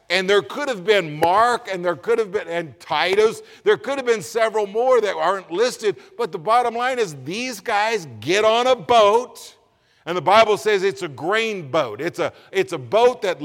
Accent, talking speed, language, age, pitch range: American, 200 wpm, English, 50-69, 170-235 Hz